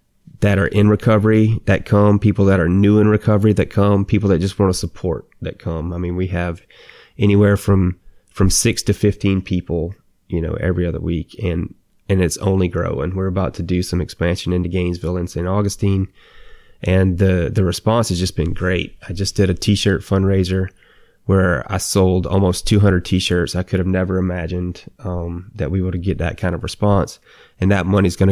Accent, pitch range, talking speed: American, 90-100 Hz, 200 wpm